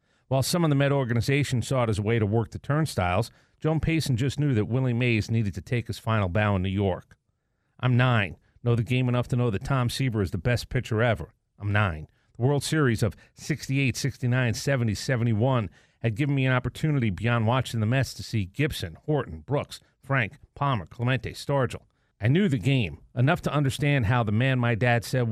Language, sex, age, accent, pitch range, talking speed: English, male, 40-59, American, 110-135 Hz, 210 wpm